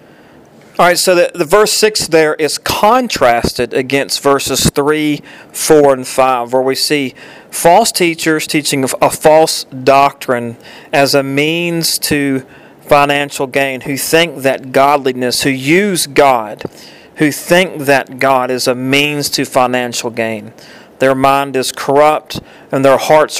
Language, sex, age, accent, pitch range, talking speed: English, male, 40-59, American, 130-155 Hz, 140 wpm